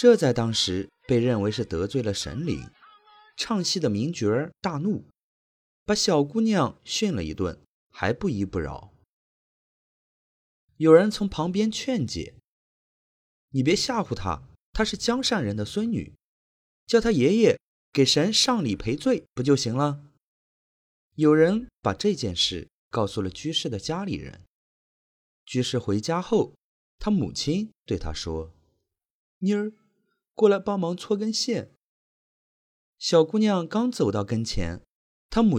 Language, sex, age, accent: Chinese, male, 30-49, native